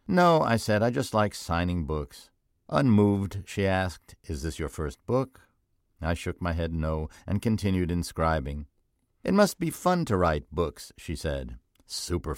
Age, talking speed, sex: 60-79, 165 wpm, male